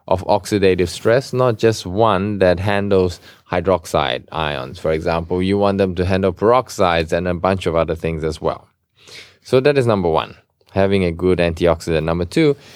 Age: 20-39